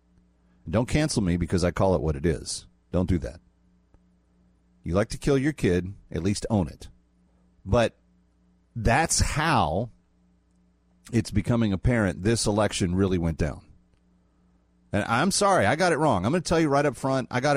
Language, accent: English, American